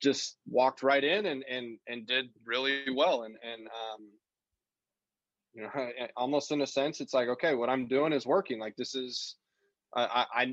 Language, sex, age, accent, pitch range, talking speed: English, male, 20-39, American, 115-140 Hz, 180 wpm